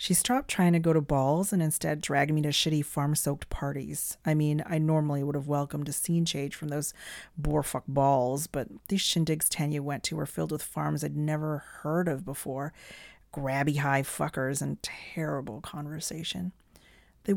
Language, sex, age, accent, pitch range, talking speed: English, female, 40-59, American, 140-160 Hz, 175 wpm